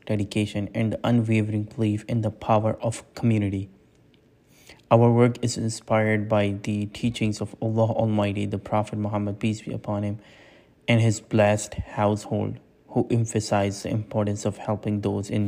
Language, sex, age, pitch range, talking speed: English, male, 20-39, 100-110 Hz, 150 wpm